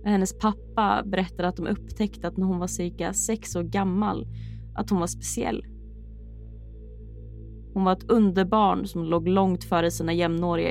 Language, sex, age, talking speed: Swedish, female, 20-39, 155 wpm